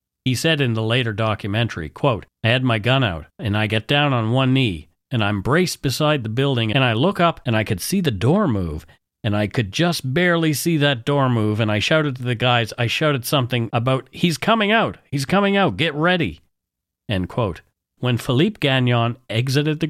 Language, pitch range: English, 105-145 Hz